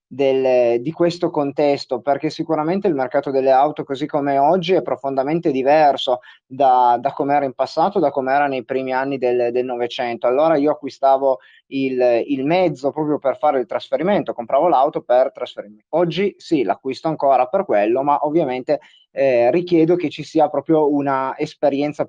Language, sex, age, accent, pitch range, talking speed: Italian, male, 30-49, native, 130-155 Hz, 160 wpm